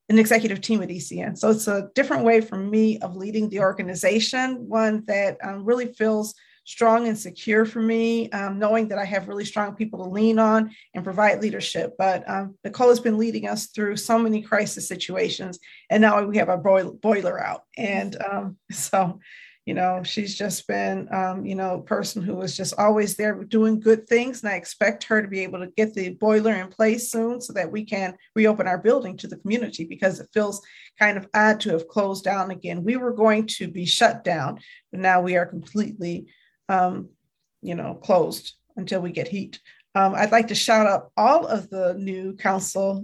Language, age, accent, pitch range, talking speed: English, 40-59, American, 190-220 Hz, 205 wpm